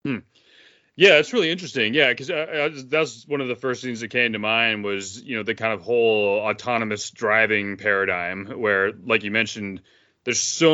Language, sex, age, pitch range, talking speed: English, male, 30-49, 105-130 Hz, 195 wpm